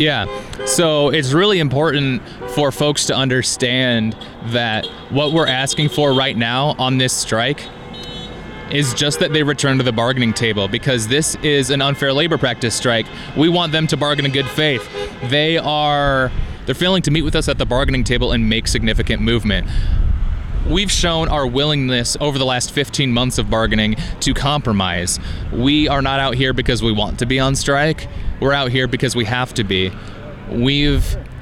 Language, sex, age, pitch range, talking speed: English, male, 20-39, 105-135 Hz, 180 wpm